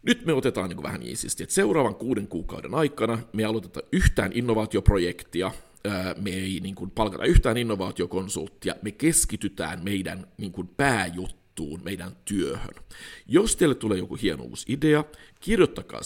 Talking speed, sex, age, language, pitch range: 130 wpm, male, 50-69, Finnish, 95-125 Hz